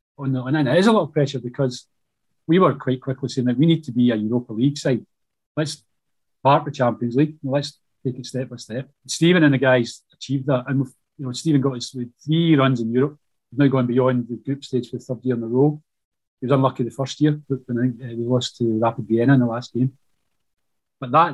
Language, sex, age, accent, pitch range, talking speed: English, male, 30-49, British, 125-150 Hz, 240 wpm